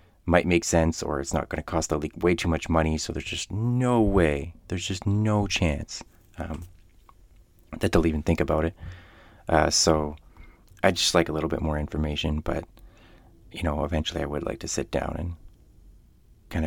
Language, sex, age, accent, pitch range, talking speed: English, male, 30-49, American, 80-90 Hz, 185 wpm